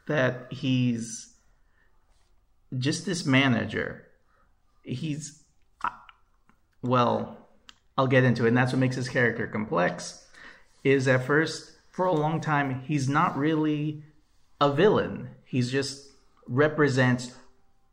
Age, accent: 40-59, American